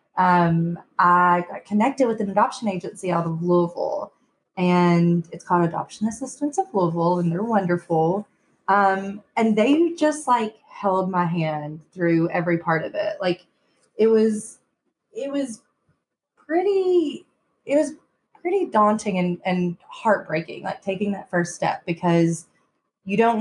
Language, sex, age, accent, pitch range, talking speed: English, female, 20-39, American, 170-205 Hz, 140 wpm